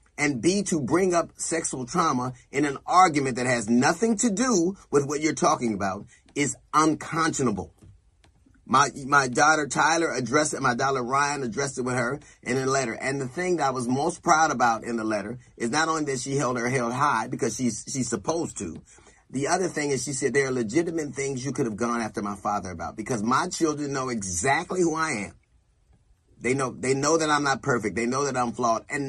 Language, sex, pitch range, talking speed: English, male, 120-160 Hz, 215 wpm